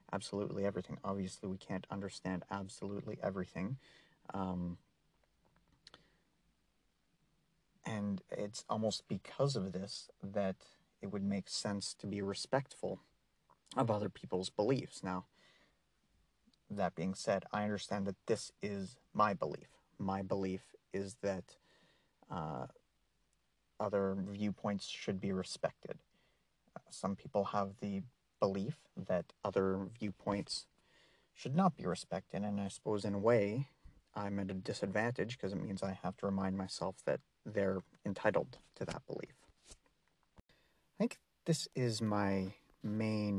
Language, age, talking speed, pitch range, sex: English, 30-49, 125 wpm, 95-105 Hz, male